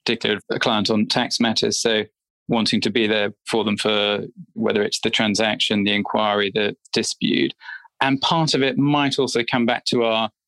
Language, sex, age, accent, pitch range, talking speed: English, male, 20-39, British, 110-140 Hz, 180 wpm